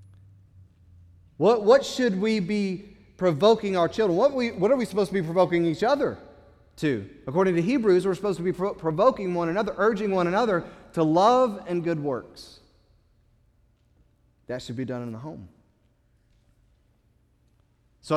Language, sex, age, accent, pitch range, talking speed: English, male, 30-49, American, 130-200 Hz, 150 wpm